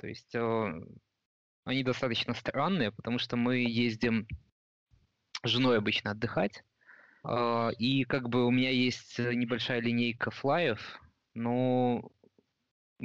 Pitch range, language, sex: 115-130 Hz, Russian, male